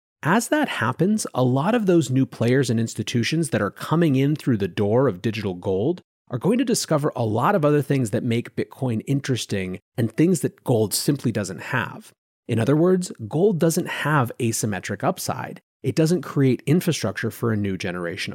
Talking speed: 185 wpm